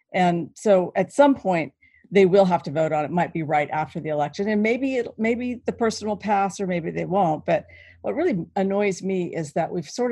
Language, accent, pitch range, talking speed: English, American, 170-205 Hz, 235 wpm